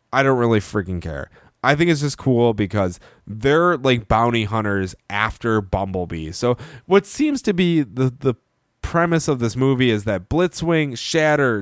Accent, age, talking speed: American, 20-39, 165 wpm